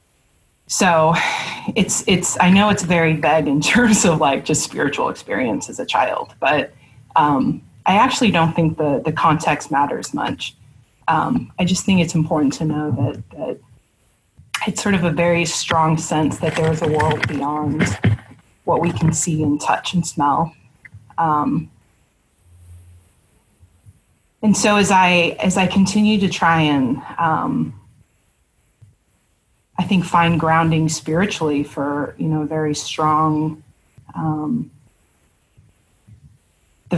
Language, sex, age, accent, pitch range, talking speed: English, female, 30-49, American, 145-175 Hz, 135 wpm